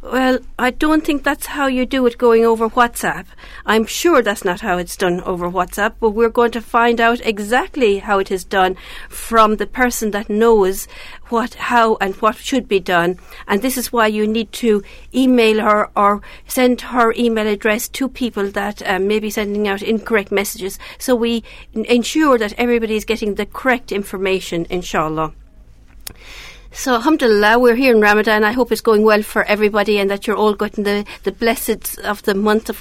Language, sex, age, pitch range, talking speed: English, female, 50-69, 205-245 Hz, 190 wpm